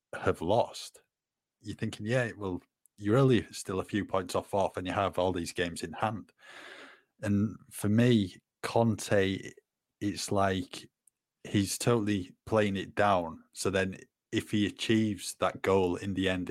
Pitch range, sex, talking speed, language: 90-105 Hz, male, 160 wpm, English